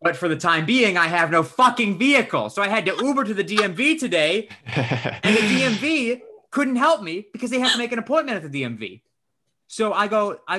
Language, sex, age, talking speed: English, male, 30-49, 220 wpm